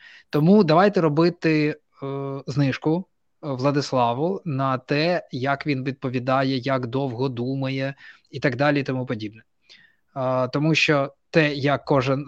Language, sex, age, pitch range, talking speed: Ukrainian, male, 20-39, 130-155 Hz, 125 wpm